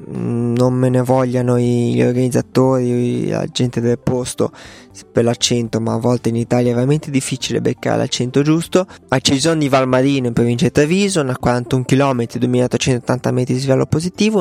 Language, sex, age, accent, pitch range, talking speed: Italian, male, 20-39, native, 120-145 Hz, 160 wpm